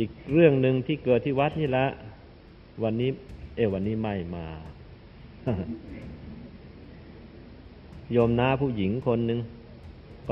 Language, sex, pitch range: Thai, male, 85-110 Hz